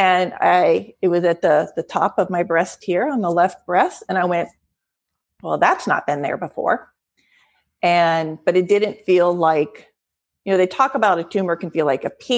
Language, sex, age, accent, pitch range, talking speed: English, female, 40-59, American, 155-190 Hz, 210 wpm